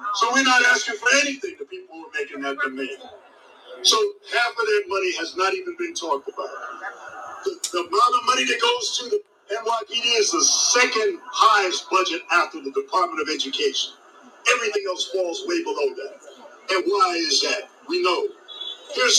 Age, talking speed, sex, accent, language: 50-69, 180 wpm, male, American, English